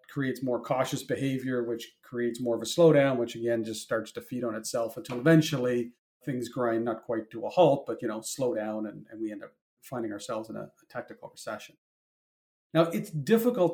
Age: 40-59